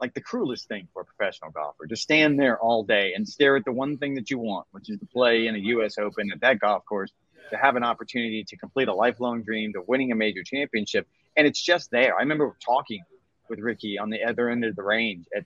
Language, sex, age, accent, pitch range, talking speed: English, male, 30-49, American, 110-135 Hz, 250 wpm